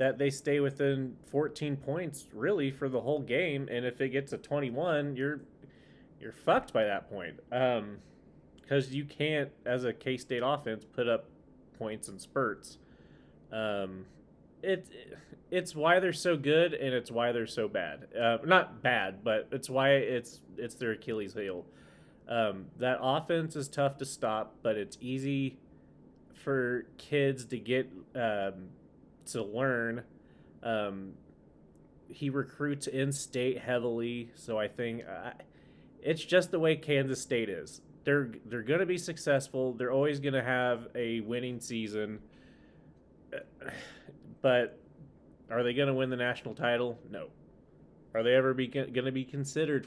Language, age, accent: English, 30-49, American